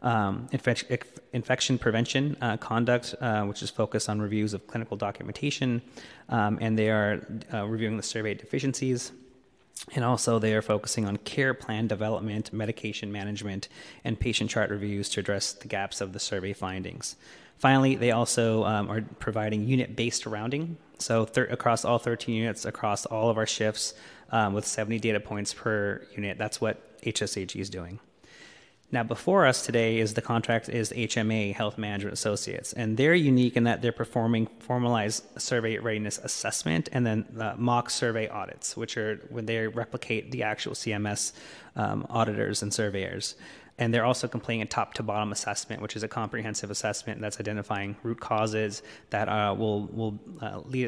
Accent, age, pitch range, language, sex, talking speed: American, 30-49, 105-120 Hz, English, male, 165 wpm